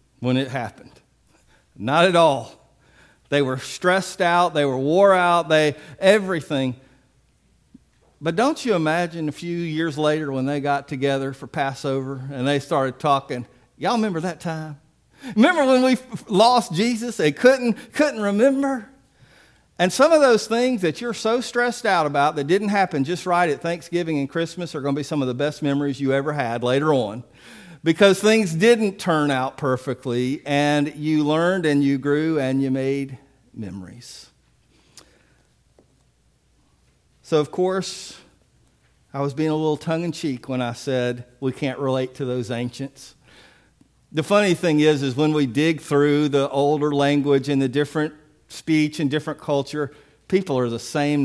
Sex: male